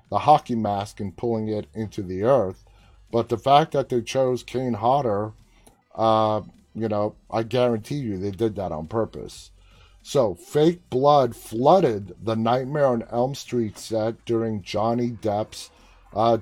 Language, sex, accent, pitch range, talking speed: English, male, American, 105-125 Hz, 155 wpm